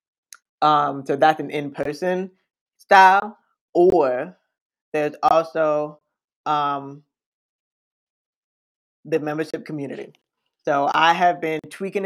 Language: English